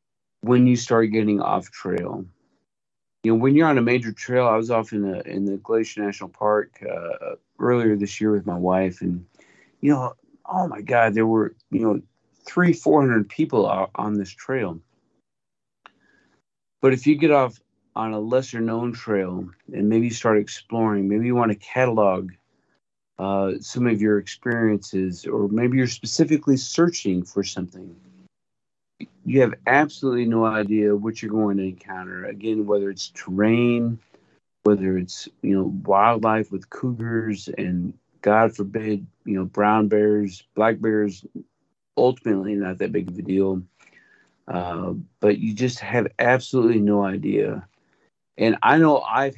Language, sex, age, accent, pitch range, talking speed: English, male, 40-59, American, 95-115 Hz, 155 wpm